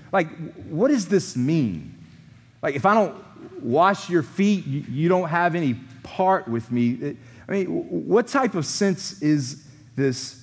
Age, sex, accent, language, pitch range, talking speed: 30-49, male, American, English, 130-200 Hz, 165 wpm